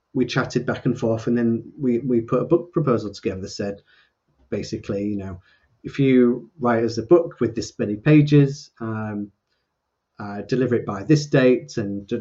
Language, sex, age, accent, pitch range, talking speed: English, male, 30-49, British, 110-135 Hz, 185 wpm